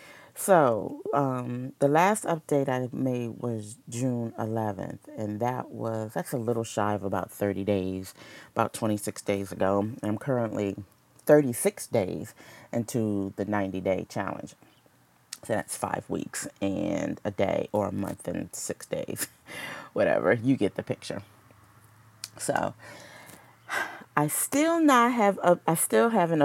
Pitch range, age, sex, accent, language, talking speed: 105-160 Hz, 30-49, female, American, English, 135 wpm